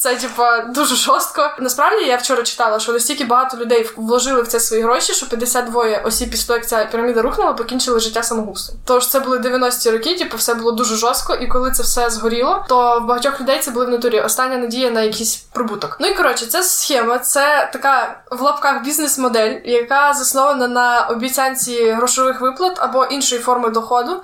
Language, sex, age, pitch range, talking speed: Ukrainian, female, 20-39, 240-275 Hz, 195 wpm